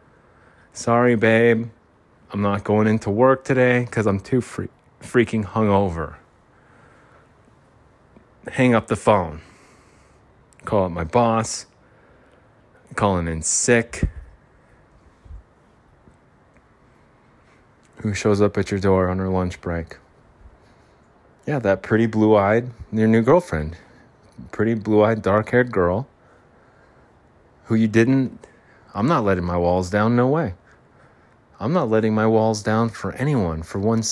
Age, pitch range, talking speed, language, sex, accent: 30-49, 95-120 Hz, 115 wpm, English, male, American